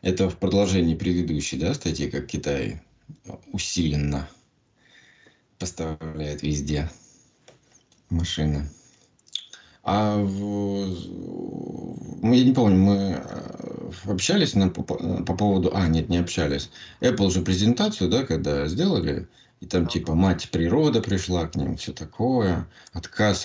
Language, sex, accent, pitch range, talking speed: Russian, male, native, 85-105 Hz, 105 wpm